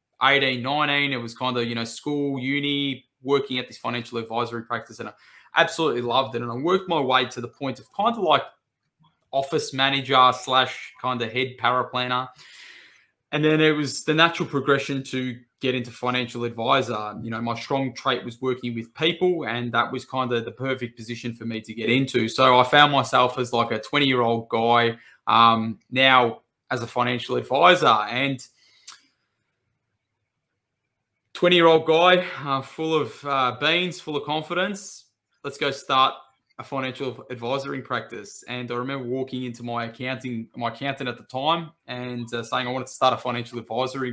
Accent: Australian